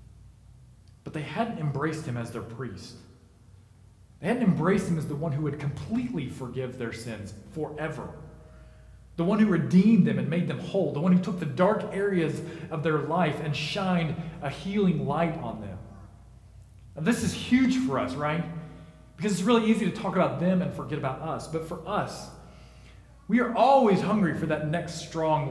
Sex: male